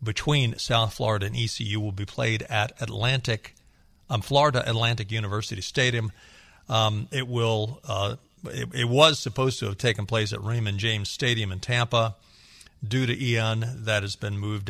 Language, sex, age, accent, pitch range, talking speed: English, male, 50-69, American, 100-135 Hz, 165 wpm